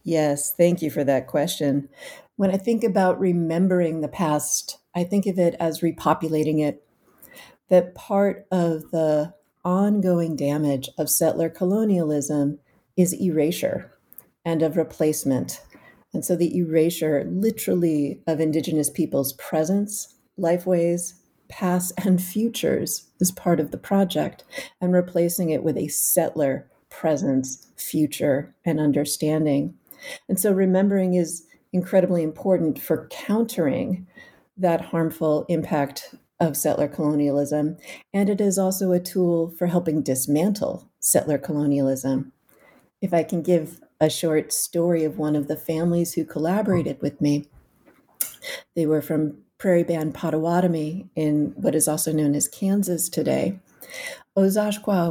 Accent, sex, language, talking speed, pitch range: American, female, English, 130 wpm, 155-185 Hz